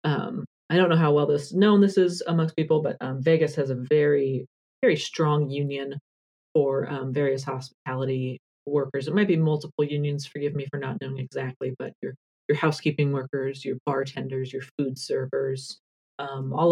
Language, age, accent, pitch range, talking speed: English, 40-59, American, 135-155 Hz, 175 wpm